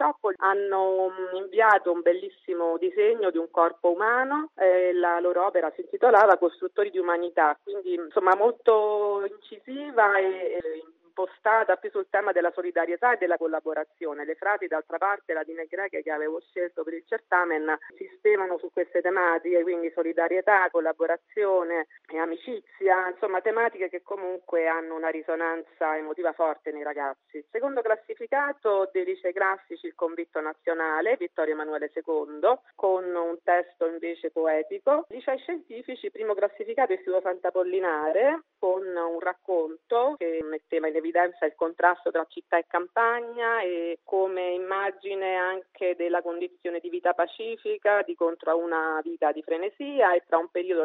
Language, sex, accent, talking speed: Italian, female, native, 145 wpm